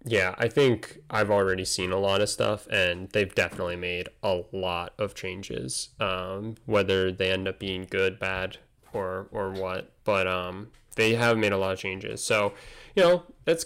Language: English